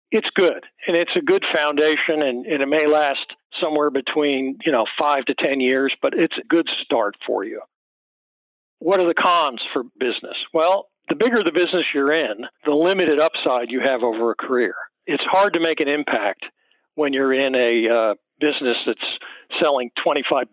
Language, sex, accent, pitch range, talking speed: English, male, American, 135-170 Hz, 185 wpm